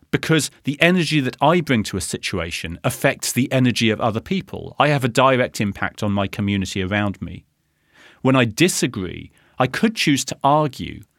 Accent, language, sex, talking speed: British, English, male, 175 wpm